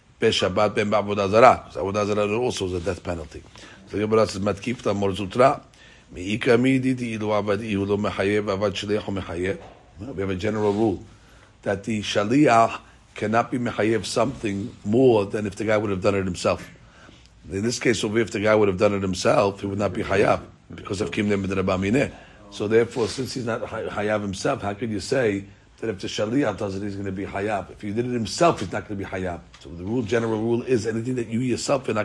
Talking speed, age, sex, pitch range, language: 170 wpm, 40-59, male, 100-115 Hz, English